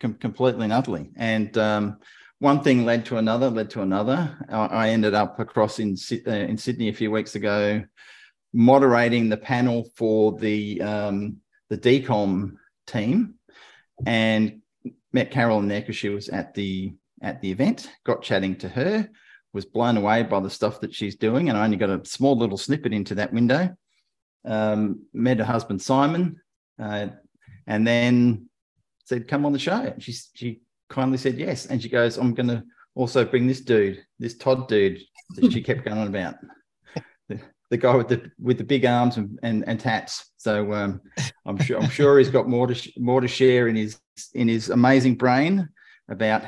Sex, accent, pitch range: male, Australian, 105-130 Hz